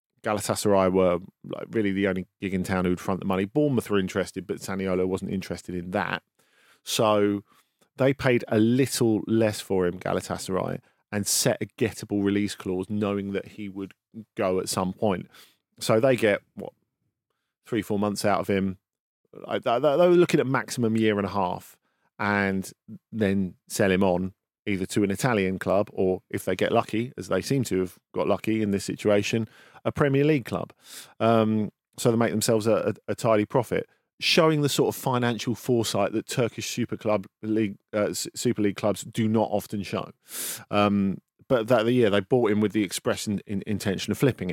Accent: British